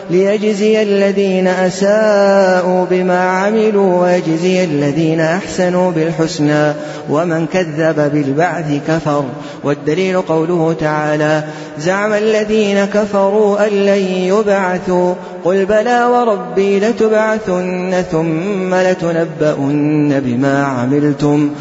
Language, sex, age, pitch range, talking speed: Arabic, male, 30-49, 160-200 Hz, 85 wpm